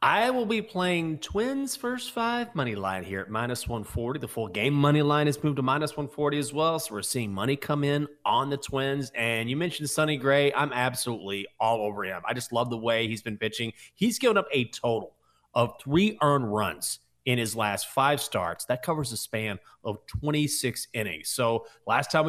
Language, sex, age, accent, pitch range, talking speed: English, male, 30-49, American, 115-145 Hz, 205 wpm